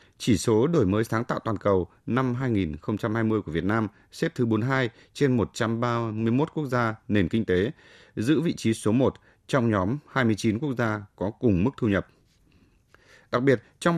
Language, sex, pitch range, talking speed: Vietnamese, male, 100-130 Hz, 175 wpm